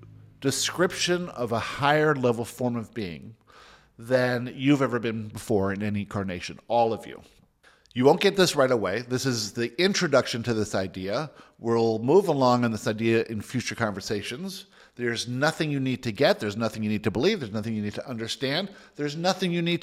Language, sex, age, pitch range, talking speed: English, male, 50-69, 110-150 Hz, 190 wpm